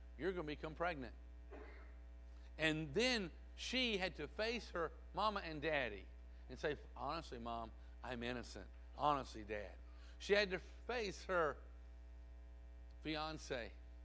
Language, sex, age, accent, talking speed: English, male, 50-69, American, 120 wpm